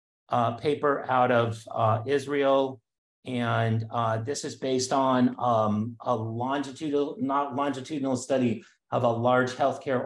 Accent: American